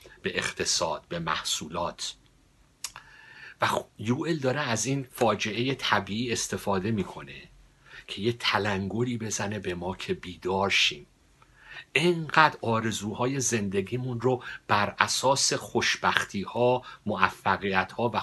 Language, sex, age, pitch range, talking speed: Persian, male, 50-69, 100-125 Hz, 105 wpm